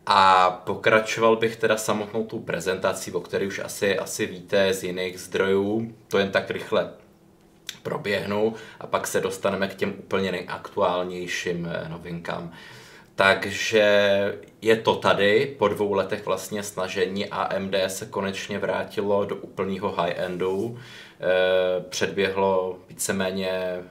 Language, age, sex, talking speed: Czech, 20-39, male, 120 wpm